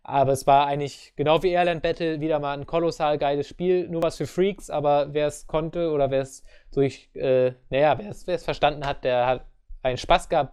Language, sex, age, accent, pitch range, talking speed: English, male, 20-39, German, 140-165 Hz, 195 wpm